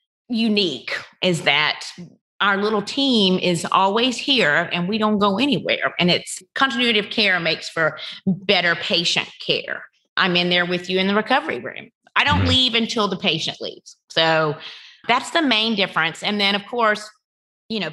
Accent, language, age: American, English, 30-49